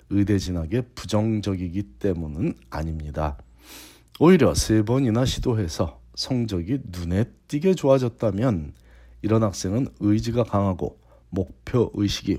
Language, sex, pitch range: Korean, male, 80-115 Hz